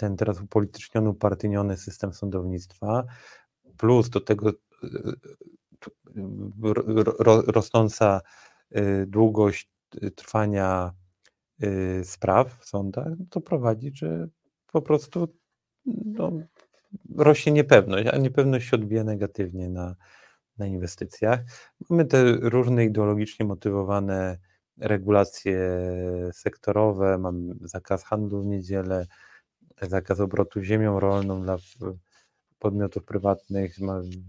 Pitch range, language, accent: 100-115 Hz, Polish, native